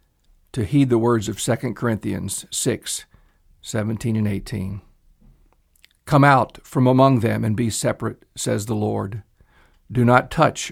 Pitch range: 105-135 Hz